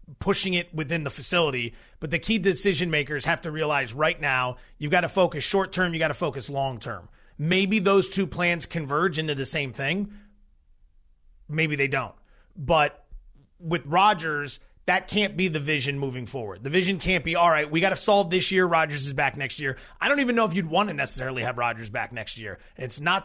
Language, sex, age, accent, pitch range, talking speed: English, male, 30-49, American, 150-195 Hz, 205 wpm